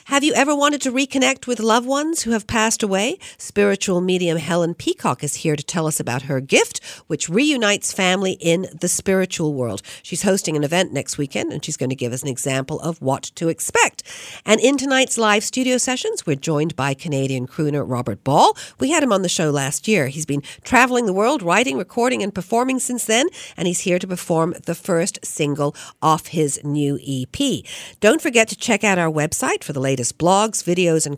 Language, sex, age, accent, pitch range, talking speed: English, female, 50-69, American, 155-230 Hz, 205 wpm